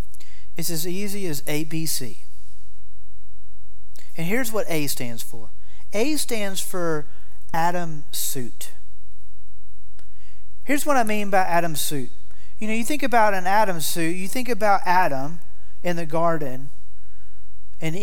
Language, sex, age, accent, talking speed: English, male, 40-59, American, 135 wpm